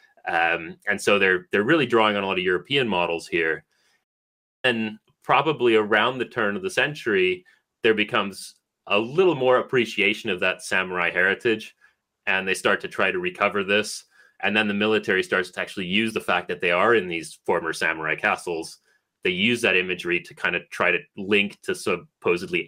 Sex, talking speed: male, 185 wpm